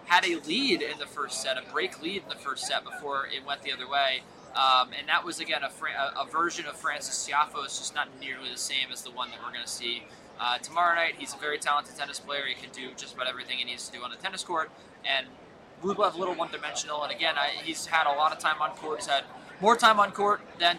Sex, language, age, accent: male, English, 20-39, American